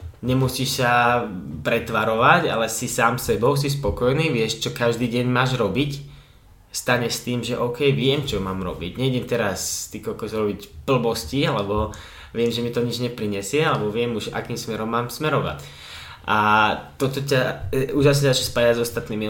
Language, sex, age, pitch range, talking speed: Czech, male, 20-39, 105-135 Hz, 160 wpm